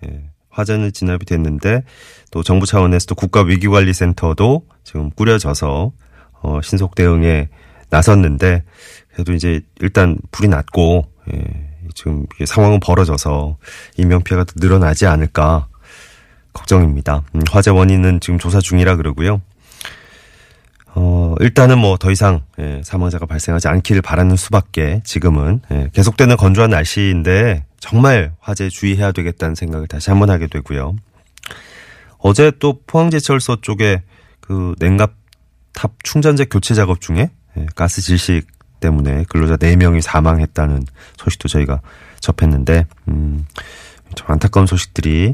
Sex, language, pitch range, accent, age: male, Korean, 80-100 Hz, native, 30-49